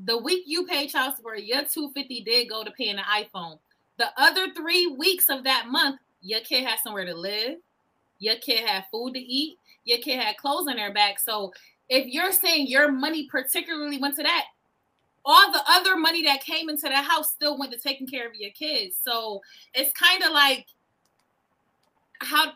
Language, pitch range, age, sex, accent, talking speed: English, 245-310 Hz, 20-39, female, American, 195 wpm